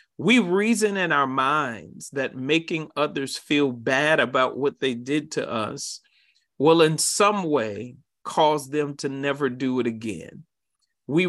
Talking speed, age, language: 150 wpm, 40-59, English